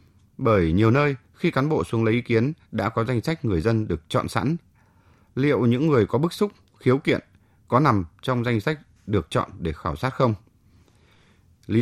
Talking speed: 200 wpm